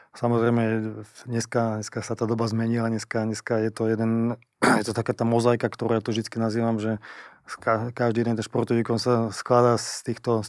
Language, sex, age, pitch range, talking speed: Slovak, male, 20-39, 110-120 Hz, 185 wpm